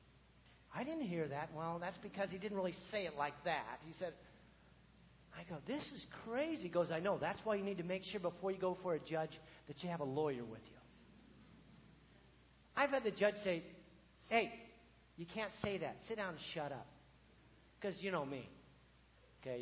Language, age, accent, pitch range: English, 50-69, American, 145-225 Hz